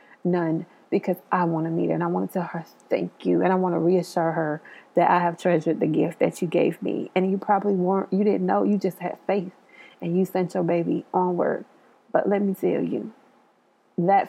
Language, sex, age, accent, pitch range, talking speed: English, female, 30-49, American, 170-195 Hz, 225 wpm